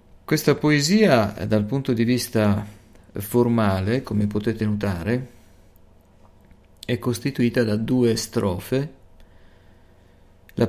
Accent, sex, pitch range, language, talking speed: native, male, 95-120 Hz, Italian, 90 wpm